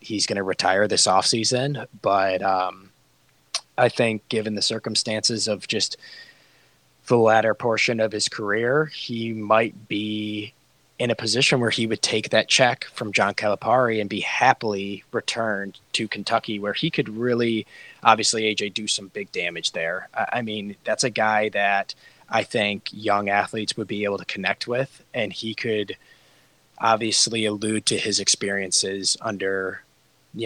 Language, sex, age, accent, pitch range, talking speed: English, male, 20-39, American, 100-115 Hz, 160 wpm